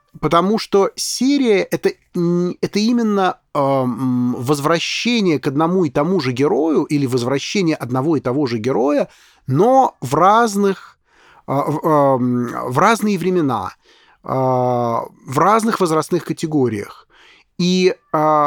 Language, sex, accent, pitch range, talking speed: Russian, male, native, 140-190 Hz, 115 wpm